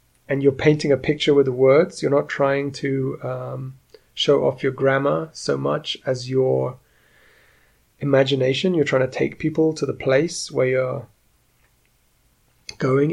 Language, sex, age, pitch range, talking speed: English, male, 30-49, 130-145 Hz, 150 wpm